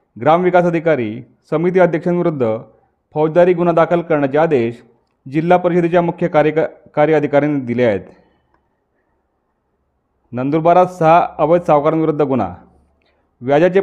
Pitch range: 135-175 Hz